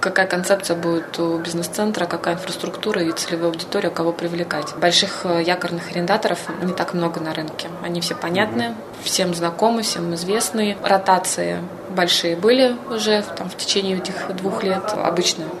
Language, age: Russian, 20-39